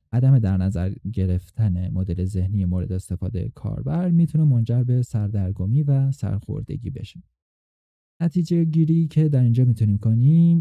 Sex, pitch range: male, 95-140 Hz